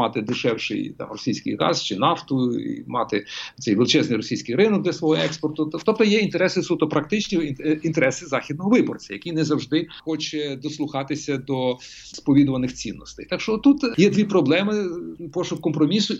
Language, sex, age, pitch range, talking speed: Ukrainian, male, 40-59, 140-180 Hz, 150 wpm